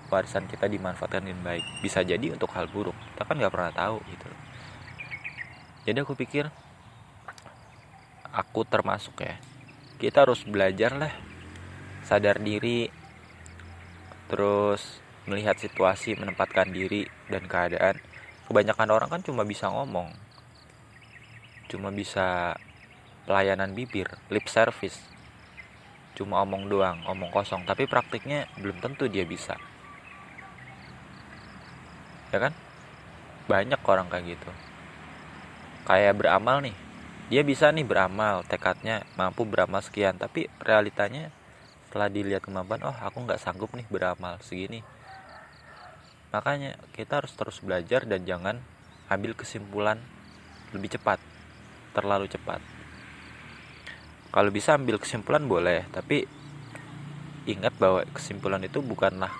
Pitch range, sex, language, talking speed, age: 95-125 Hz, male, Indonesian, 110 wpm, 20-39